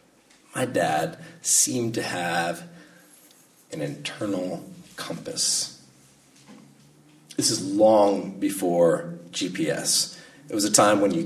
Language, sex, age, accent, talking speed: English, male, 30-49, American, 100 wpm